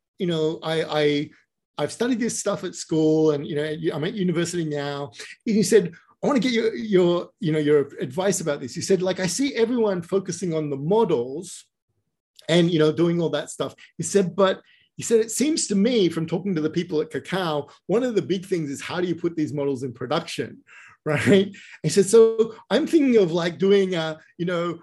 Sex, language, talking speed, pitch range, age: male, English, 220 wpm, 155-205 Hz, 30-49